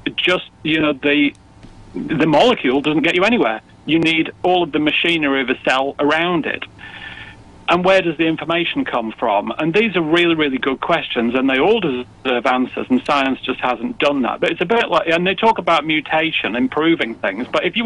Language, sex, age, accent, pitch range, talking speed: English, male, 40-59, British, 135-180 Hz, 205 wpm